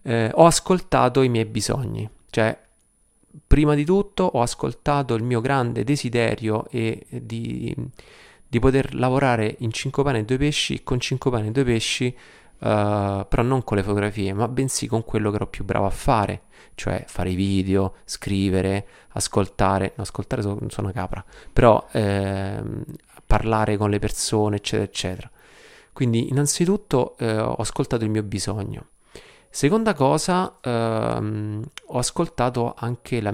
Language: Italian